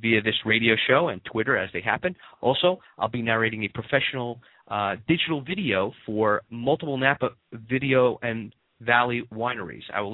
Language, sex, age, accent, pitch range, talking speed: English, male, 30-49, American, 110-150 Hz, 160 wpm